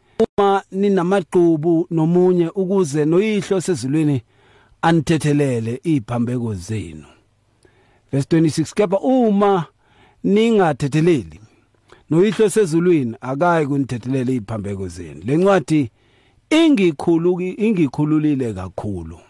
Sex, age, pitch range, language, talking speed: male, 50-69, 115-170 Hz, English, 90 wpm